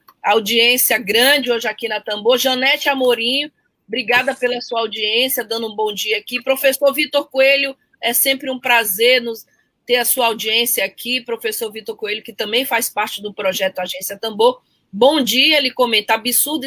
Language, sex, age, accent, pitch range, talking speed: Portuguese, female, 20-39, Brazilian, 220-270 Hz, 165 wpm